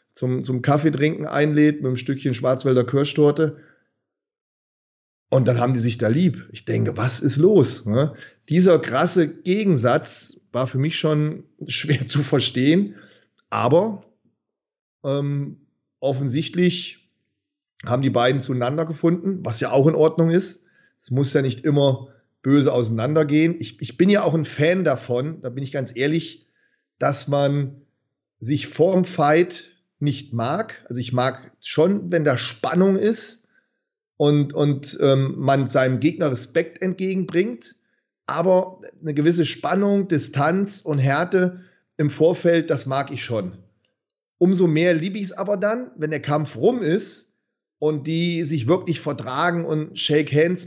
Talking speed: 145 wpm